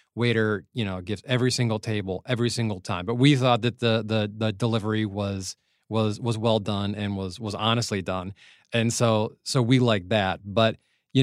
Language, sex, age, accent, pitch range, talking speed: English, male, 30-49, American, 105-130 Hz, 190 wpm